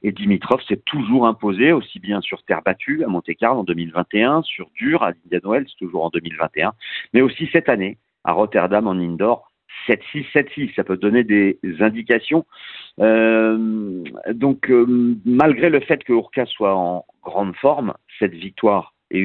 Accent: French